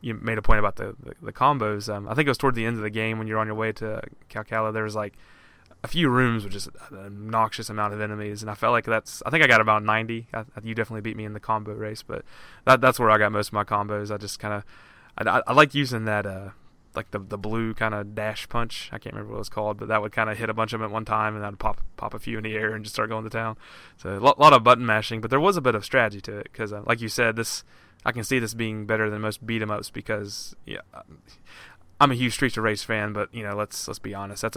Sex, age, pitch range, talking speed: male, 20-39, 105-115 Hz, 305 wpm